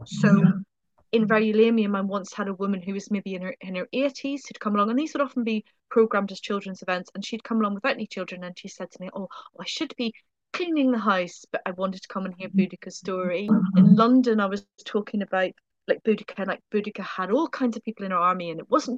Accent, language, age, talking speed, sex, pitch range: British, English, 30-49, 245 wpm, female, 200-250 Hz